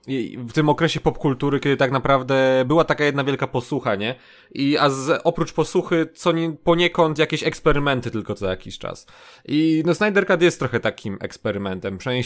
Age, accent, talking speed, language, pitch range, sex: 20-39, native, 155 wpm, Polish, 130-170 Hz, male